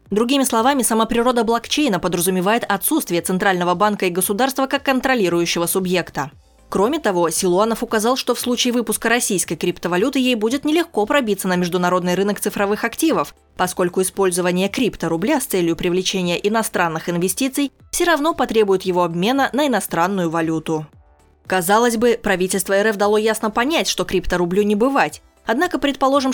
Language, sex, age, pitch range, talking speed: Russian, female, 20-39, 180-245 Hz, 140 wpm